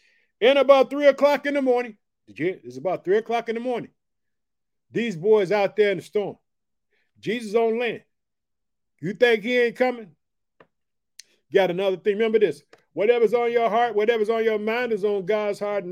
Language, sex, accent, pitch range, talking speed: English, male, American, 190-240 Hz, 175 wpm